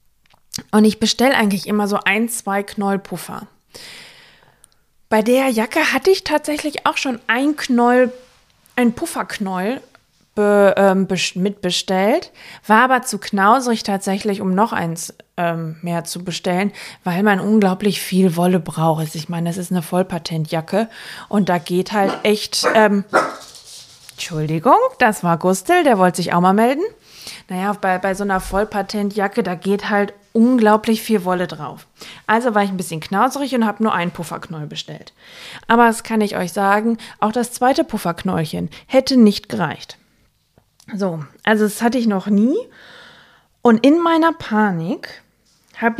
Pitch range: 185-230 Hz